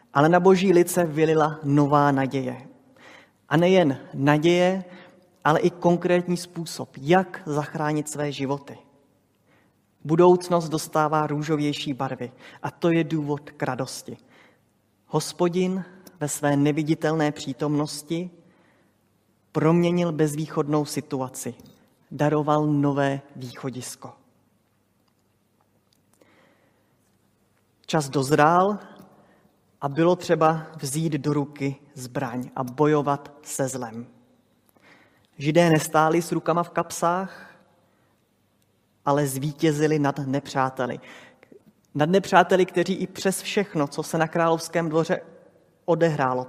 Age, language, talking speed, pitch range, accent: 30-49, Czech, 95 wpm, 135-165 Hz, native